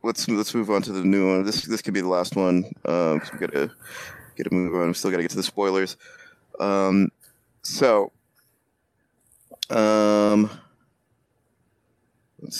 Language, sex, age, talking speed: English, male, 30-49, 165 wpm